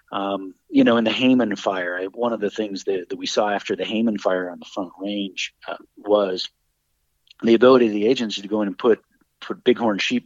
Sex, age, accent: male, 50-69, American